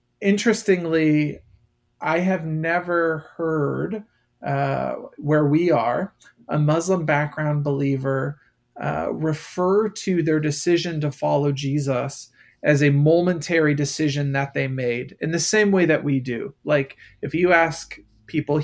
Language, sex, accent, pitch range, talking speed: English, male, American, 140-165 Hz, 130 wpm